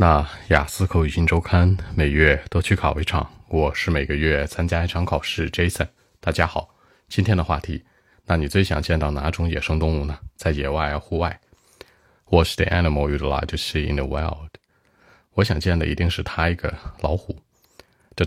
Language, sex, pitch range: Chinese, male, 75-95 Hz